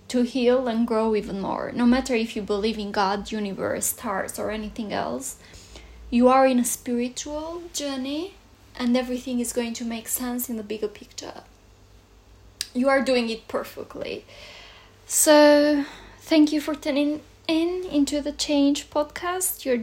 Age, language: 10-29, English